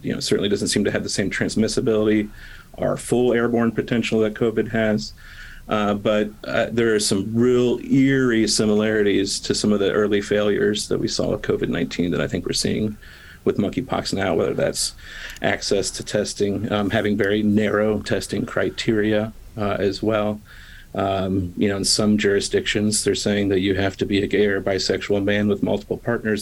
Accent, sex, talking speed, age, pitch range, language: American, male, 180 wpm, 40-59, 105-110 Hz, English